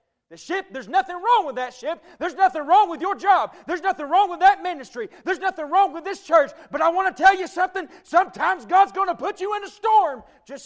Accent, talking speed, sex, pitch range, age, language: American, 240 wpm, male, 240-370 Hz, 40-59, English